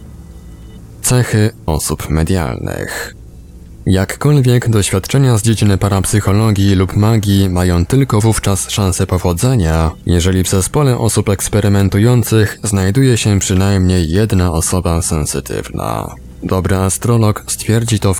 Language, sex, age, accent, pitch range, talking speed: Polish, male, 20-39, native, 90-110 Hz, 100 wpm